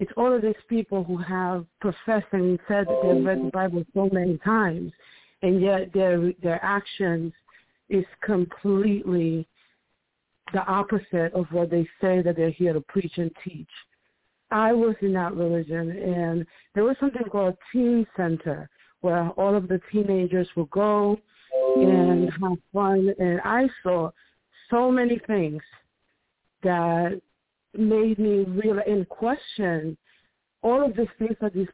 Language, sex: English, female